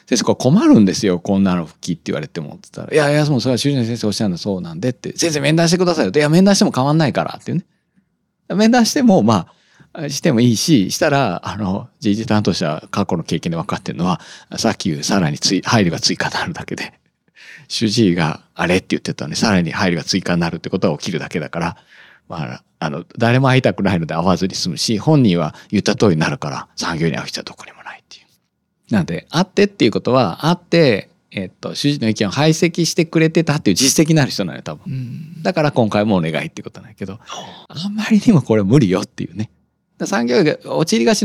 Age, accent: 40-59, native